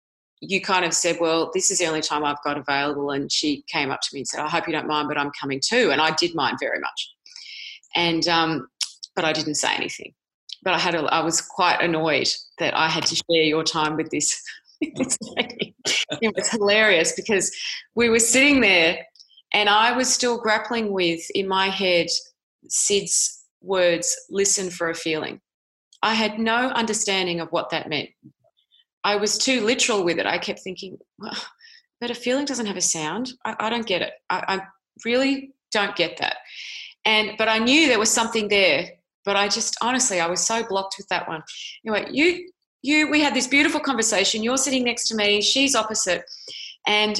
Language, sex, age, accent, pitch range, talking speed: English, female, 30-49, Australian, 175-255 Hz, 195 wpm